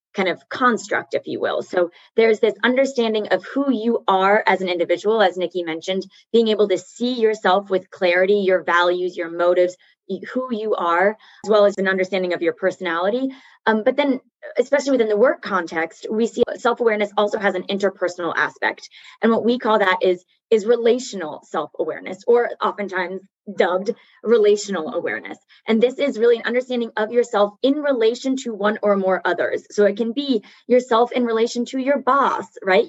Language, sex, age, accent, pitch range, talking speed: English, female, 20-39, American, 185-235 Hz, 180 wpm